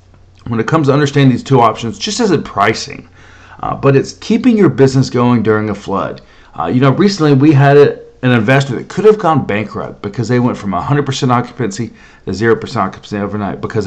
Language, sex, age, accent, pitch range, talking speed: English, male, 40-59, American, 105-135 Hz, 195 wpm